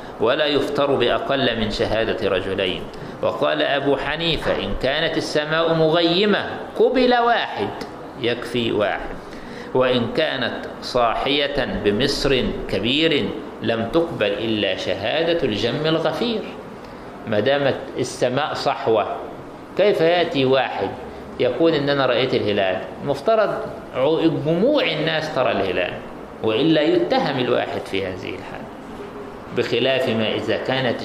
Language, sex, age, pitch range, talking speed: Arabic, male, 50-69, 120-170 Hz, 100 wpm